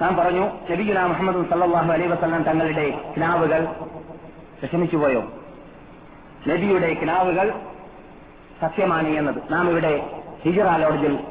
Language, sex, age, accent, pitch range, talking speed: Malayalam, male, 30-49, native, 150-175 Hz, 80 wpm